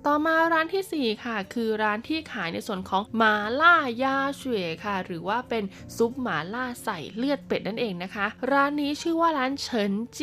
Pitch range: 195-255 Hz